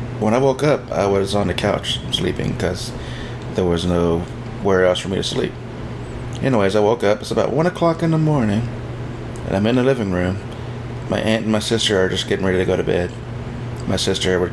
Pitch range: 100-120 Hz